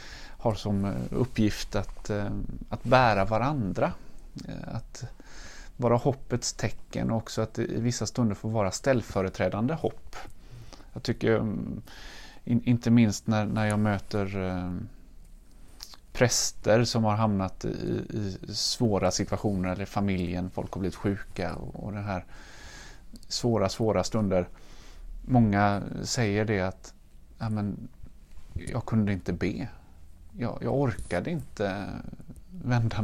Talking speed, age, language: 110 wpm, 30-49, Swedish